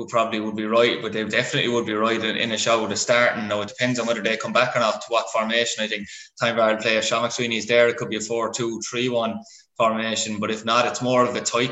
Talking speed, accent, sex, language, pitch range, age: 280 wpm, Irish, male, English, 115-130 Hz, 20-39